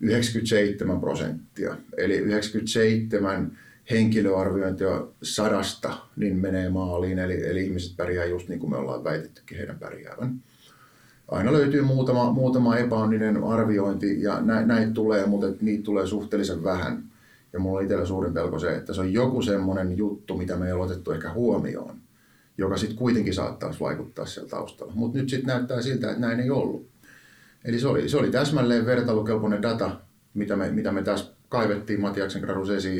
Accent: native